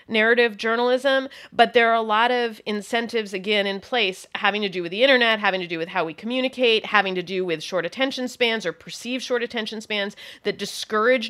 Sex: female